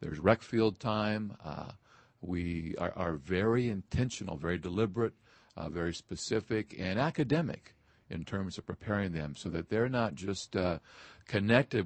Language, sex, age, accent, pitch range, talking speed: English, male, 50-69, American, 90-115 Hz, 145 wpm